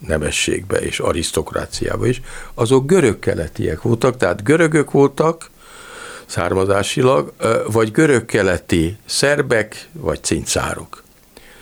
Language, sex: Hungarian, male